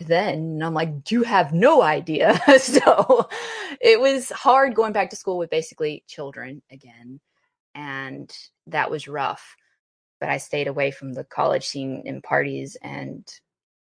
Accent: American